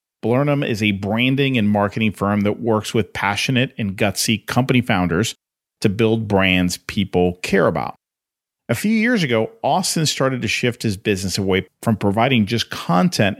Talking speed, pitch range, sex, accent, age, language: 160 wpm, 100-130 Hz, male, American, 40-59, English